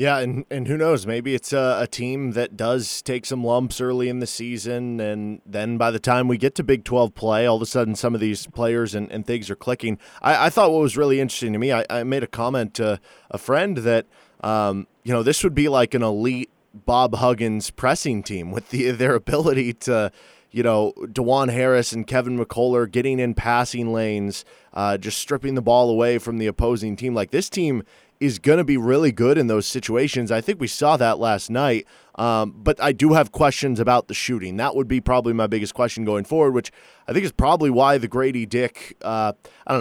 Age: 20-39